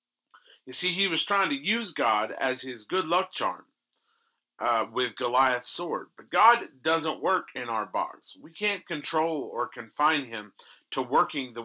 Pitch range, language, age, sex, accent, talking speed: 145-195 Hz, English, 40-59, male, American, 170 wpm